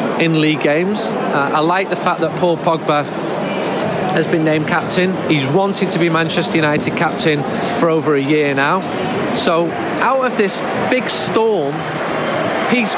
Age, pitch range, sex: 40-59, 165-200 Hz, male